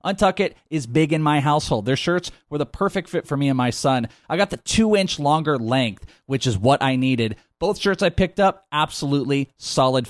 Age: 30-49